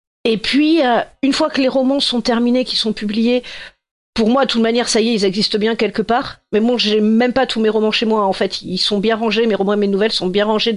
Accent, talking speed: French, 275 wpm